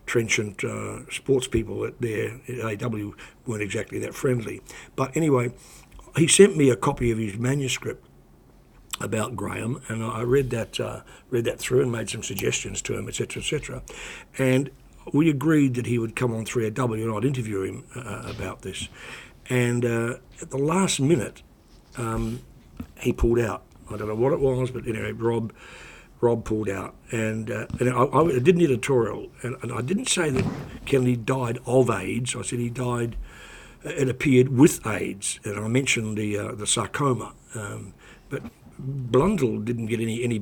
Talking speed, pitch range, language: 180 wpm, 110-130 Hz, English